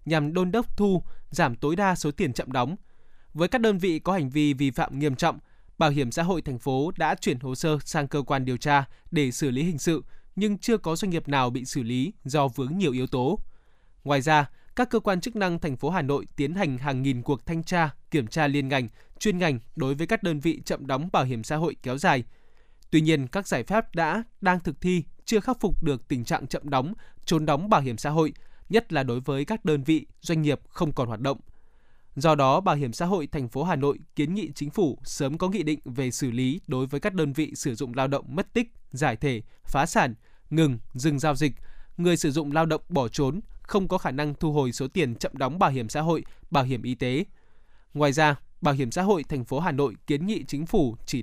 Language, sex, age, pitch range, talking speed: Vietnamese, male, 20-39, 135-175 Hz, 245 wpm